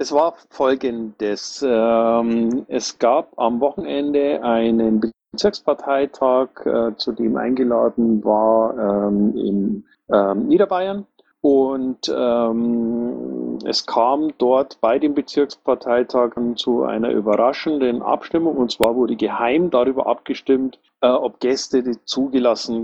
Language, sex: German, male